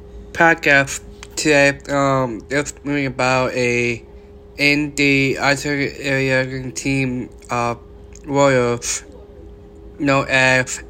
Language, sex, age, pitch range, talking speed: English, male, 20-39, 105-140 Hz, 85 wpm